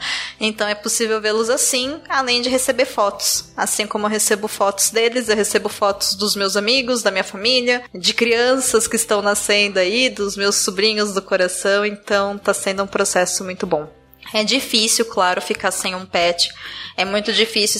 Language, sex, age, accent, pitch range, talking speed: Portuguese, female, 10-29, Brazilian, 195-225 Hz, 175 wpm